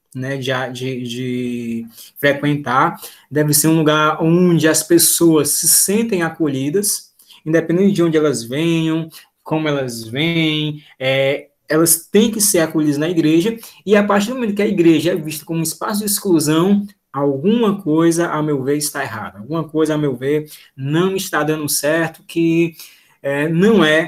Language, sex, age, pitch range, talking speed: Portuguese, male, 20-39, 145-175 Hz, 155 wpm